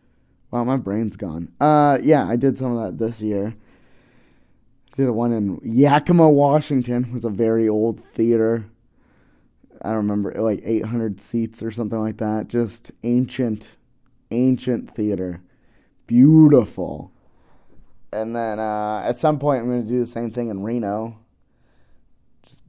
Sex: male